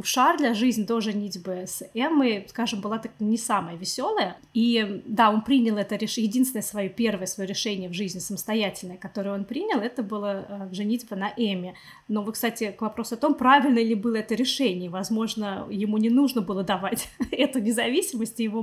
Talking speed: 185 wpm